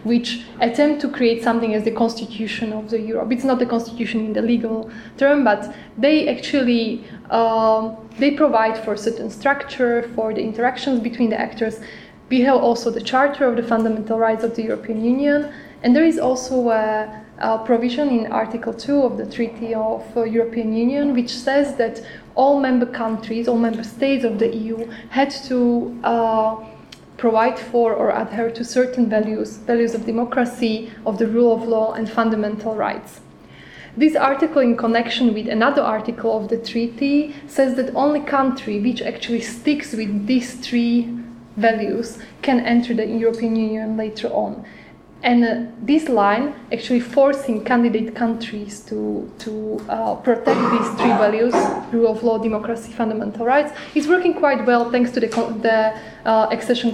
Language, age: English, 10-29